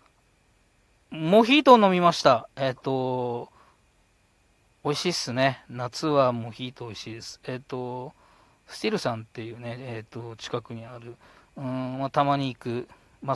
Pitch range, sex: 115-135 Hz, male